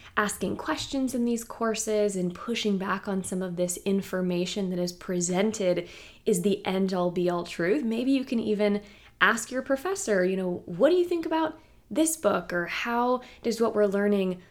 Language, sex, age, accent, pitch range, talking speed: English, female, 20-39, American, 185-230 Hz, 180 wpm